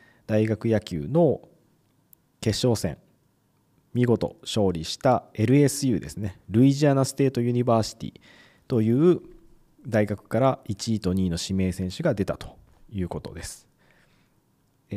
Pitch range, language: 100-155 Hz, Japanese